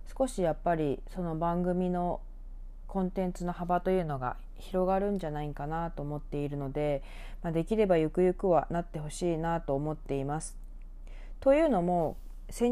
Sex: female